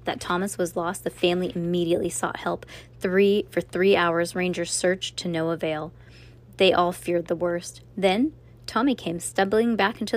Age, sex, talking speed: 20-39, female, 165 wpm